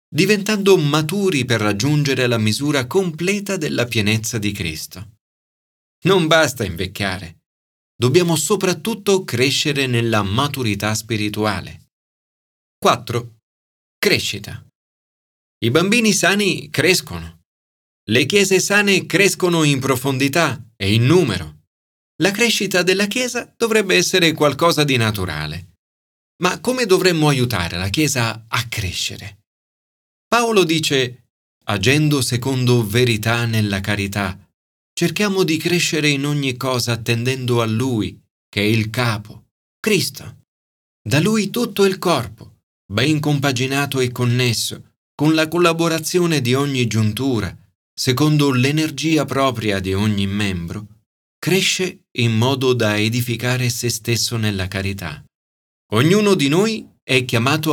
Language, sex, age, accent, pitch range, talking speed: Italian, male, 40-59, native, 105-160 Hz, 110 wpm